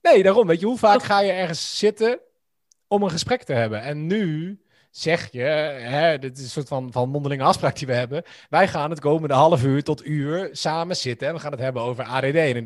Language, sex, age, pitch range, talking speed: Dutch, male, 30-49, 125-175 Hz, 235 wpm